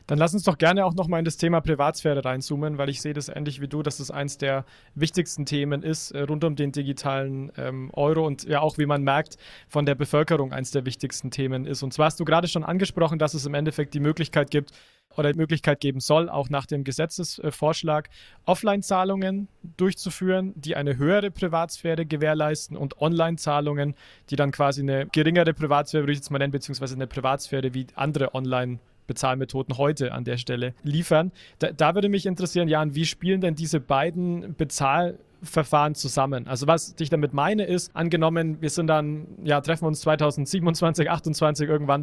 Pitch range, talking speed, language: 140-165 Hz, 185 wpm, German